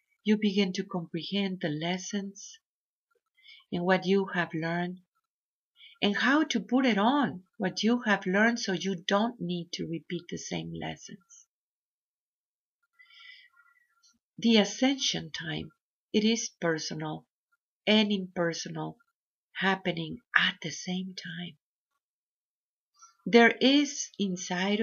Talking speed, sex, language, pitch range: 110 wpm, female, English, 180-235 Hz